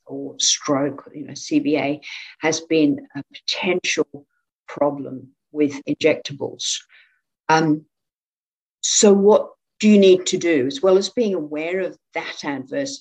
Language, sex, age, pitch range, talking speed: English, female, 60-79, 150-210 Hz, 130 wpm